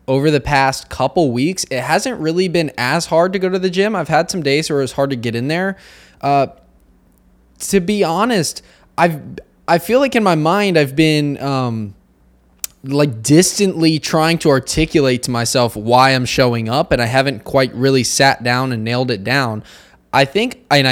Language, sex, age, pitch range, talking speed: English, male, 20-39, 120-155 Hz, 190 wpm